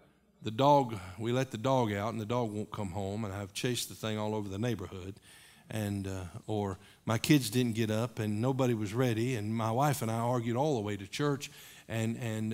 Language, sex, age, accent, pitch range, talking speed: English, male, 50-69, American, 110-140 Hz, 225 wpm